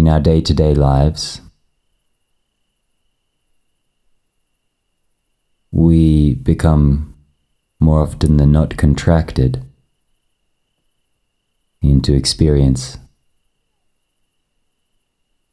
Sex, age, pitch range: male, 30-49, 70-80 Hz